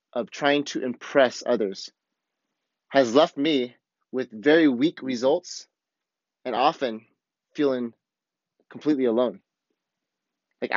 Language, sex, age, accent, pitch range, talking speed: English, male, 30-49, American, 125-155 Hz, 100 wpm